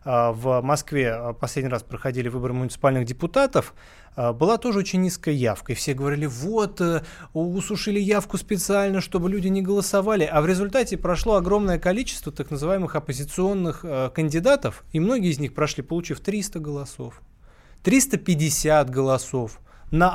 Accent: native